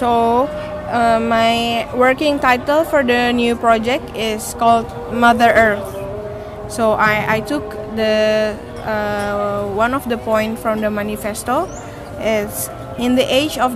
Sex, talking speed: female, 135 wpm